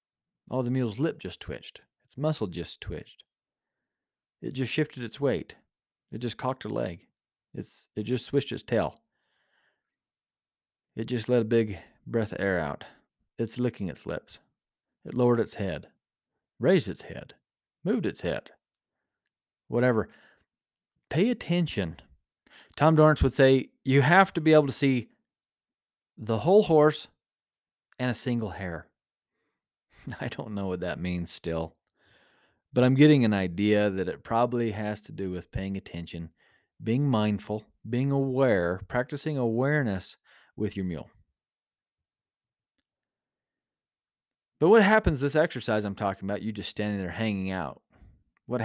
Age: 40-59